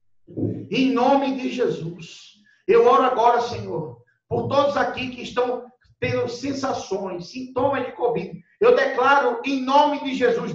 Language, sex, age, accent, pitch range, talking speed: Portuguese, male, 50-69, Brazilian, 195-290 Hz, 135 wpm